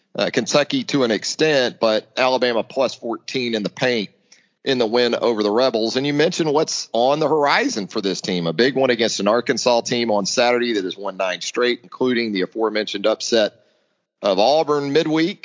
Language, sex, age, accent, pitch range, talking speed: English, male, 40-59, American, 115-155 Hz, 185 wpm